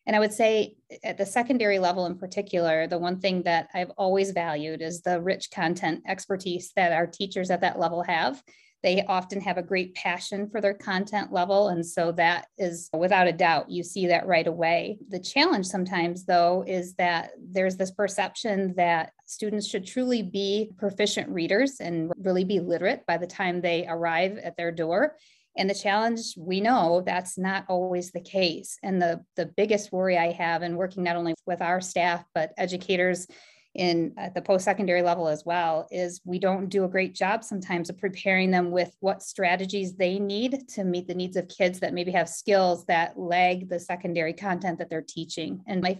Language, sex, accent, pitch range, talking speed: English, female, American, 175-195 Hz, 190 wpm